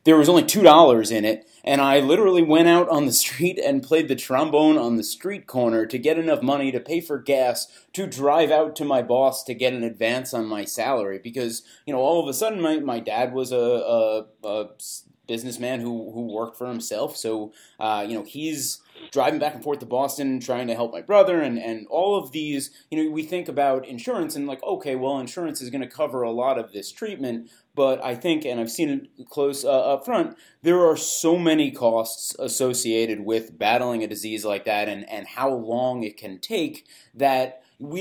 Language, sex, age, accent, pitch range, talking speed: English, male, 30-49, American, 120-155 Hz, 215 wpm